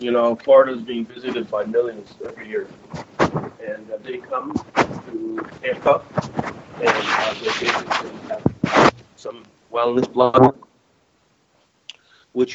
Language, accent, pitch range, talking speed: English, American, 115-130 Hz, 115 wpm